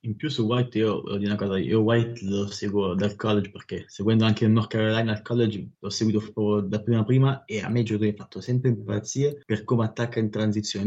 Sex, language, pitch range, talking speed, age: male, Italian, 105-125 Hz, 230 wpm, 20-39